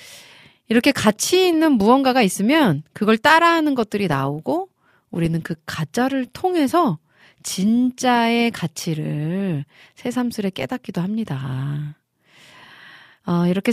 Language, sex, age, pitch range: Korean, female, 30-49, 165-245 Hz